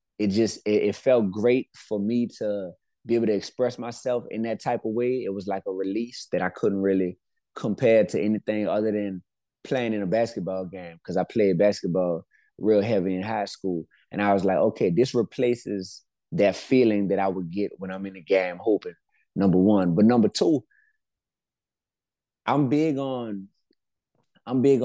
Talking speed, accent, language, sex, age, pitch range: 180 wpm, American, English, male, 20-39, 95-120 Hz